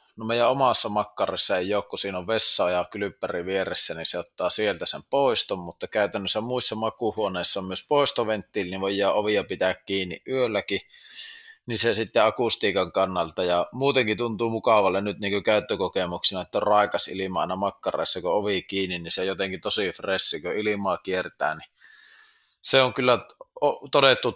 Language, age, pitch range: Finnish, 20-39, 95-120 Hz